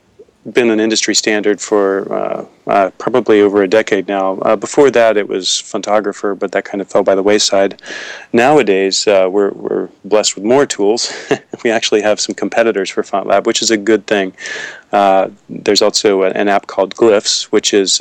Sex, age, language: male, 40-59, English